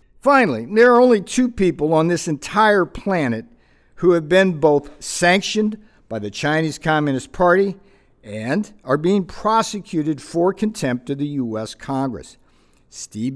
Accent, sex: American, male